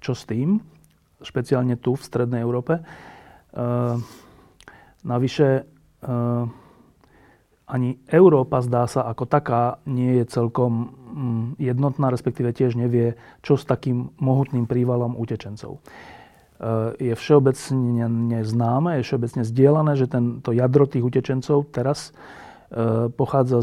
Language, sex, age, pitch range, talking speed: Slovak, male, 30-49, 120-140 Hz, 115 wpm